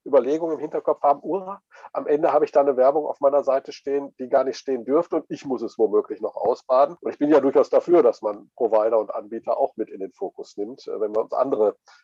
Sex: male